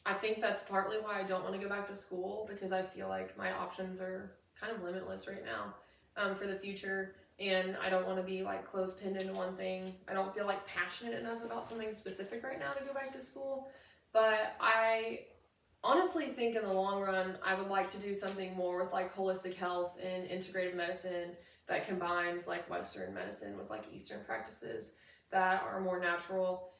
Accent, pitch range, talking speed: American, 180-200 Hz, 205 wpm